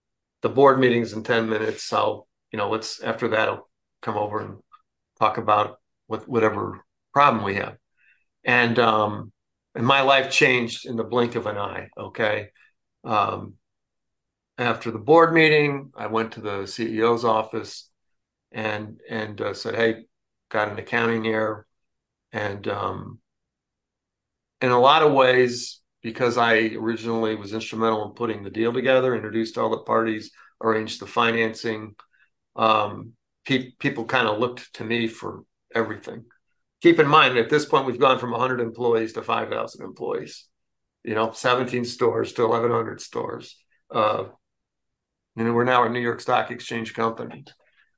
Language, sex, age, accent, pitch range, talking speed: English, male, 50-69, American, 110-125 Hz, 150 wpm